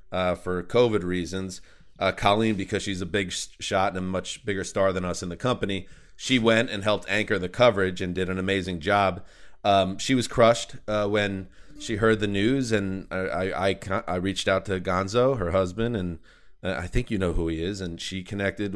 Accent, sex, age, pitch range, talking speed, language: American, male, 30-49, 95-115 Hz, 205 wpm, English